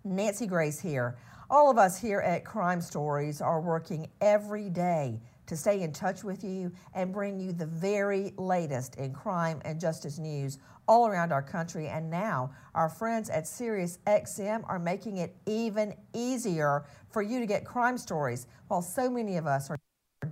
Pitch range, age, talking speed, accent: 160-225 Hz, 50-69, 175 wpm, American